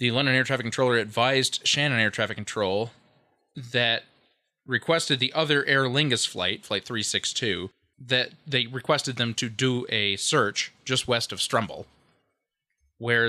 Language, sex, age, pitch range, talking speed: English, male, 20-39, 105-145 Hz, 145 wpm